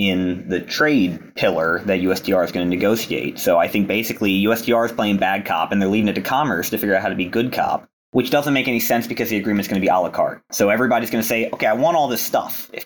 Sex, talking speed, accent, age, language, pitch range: male, 280 wpm, American, 20-39, English, 95-115 Hz